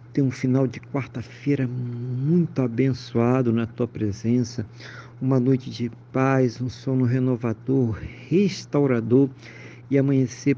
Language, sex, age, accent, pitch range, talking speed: Portuguese, male, 50-69, Brazilian, 115-130 Hz, 115 wpm